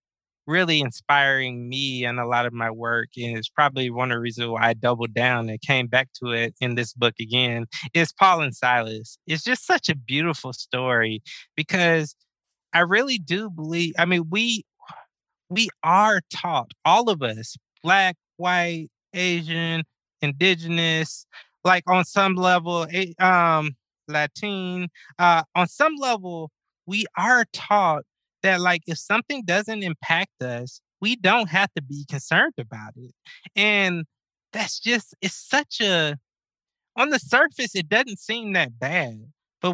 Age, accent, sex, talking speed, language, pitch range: 20-39, American, male, 150 wpm, English, 125-185 Hz